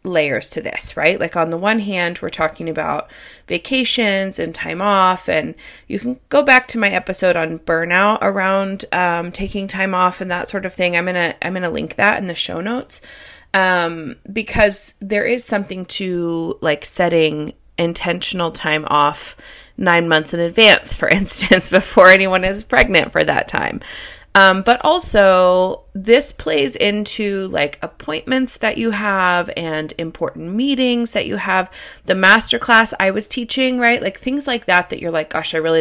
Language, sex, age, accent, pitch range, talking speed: English, female, 30-49, American, 170-215 Hz, 175 wpm